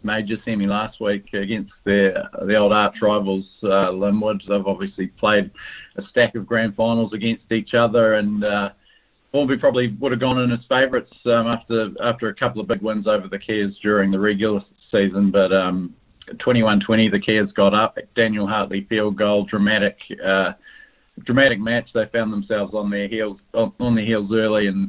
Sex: male